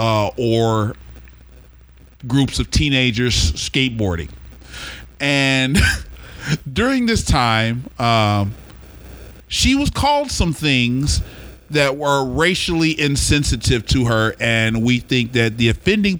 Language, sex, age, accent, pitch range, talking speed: English, male, 40-59, American, 100-150 Hz, 105 wpm